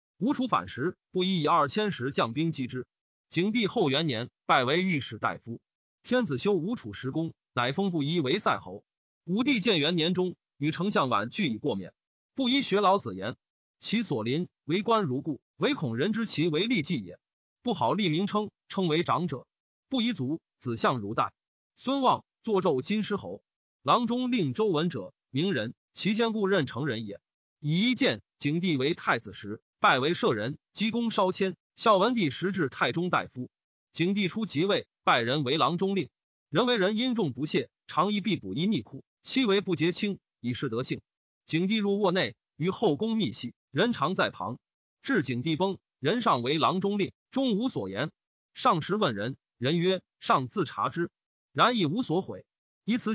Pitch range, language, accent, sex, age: 155-220 Hz, Chinese, native, male, 30-49